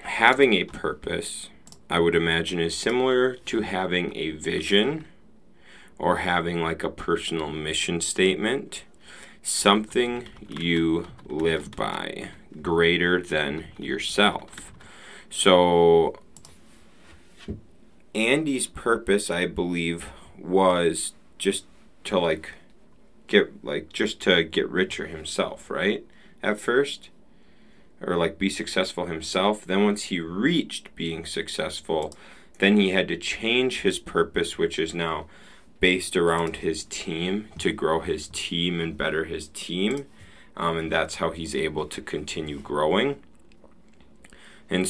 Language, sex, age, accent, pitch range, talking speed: English, male, 30-49, American, 80-95 Hz, 120 wpm